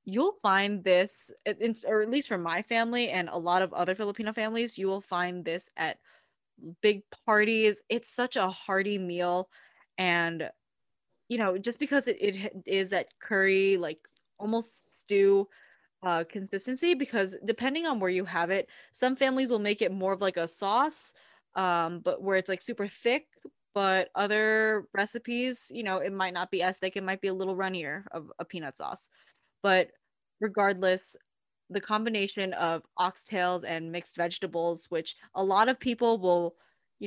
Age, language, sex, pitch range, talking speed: 20-39, English, female, 175-215 Hz, 170 wpm